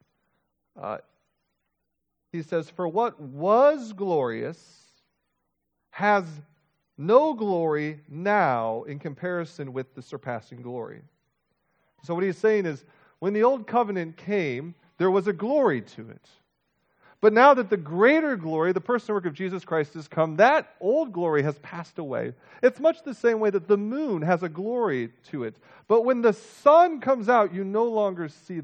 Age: 40-59